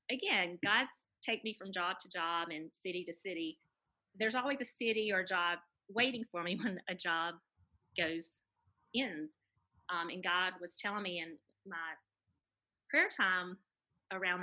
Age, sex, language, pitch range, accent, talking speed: 30-49, female, English, 165-225 Hz, American, 155 wpm